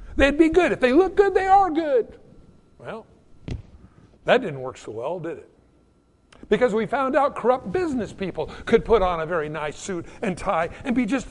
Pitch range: 185-250 Hz